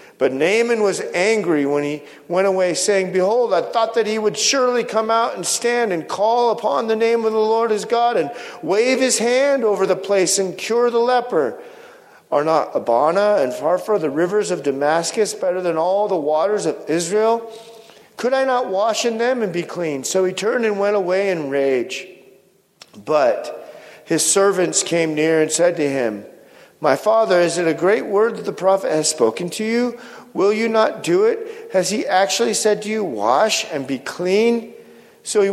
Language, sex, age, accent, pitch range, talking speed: English, male, 50-69, American, 165-225 Hz, 195 wpm